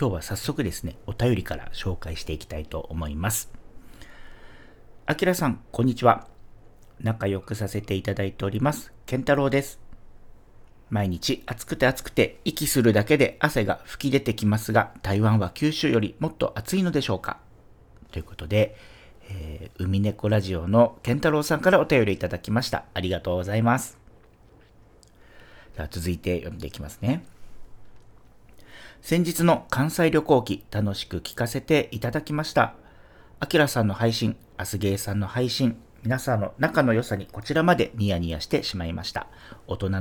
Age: 50-69